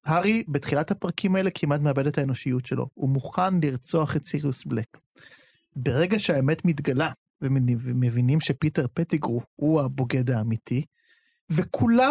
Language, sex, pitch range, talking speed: Hebrew, male, 135-180 Hz, 125 wpm